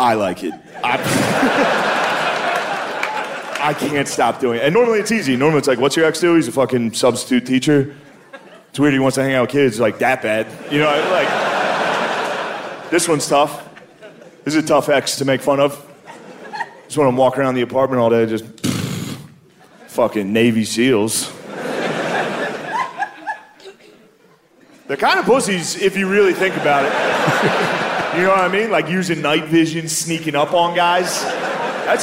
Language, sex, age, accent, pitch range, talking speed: Danish, male, 30-49, American, 145-210 Hz, 170 wpm